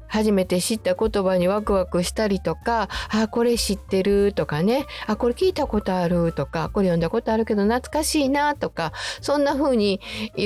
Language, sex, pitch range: Japanese, female, 175-240 Hz